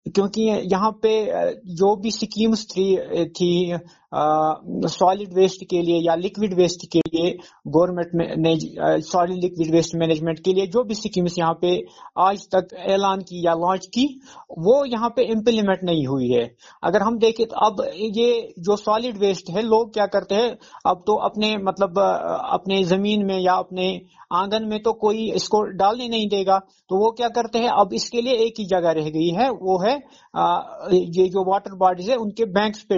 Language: Hindi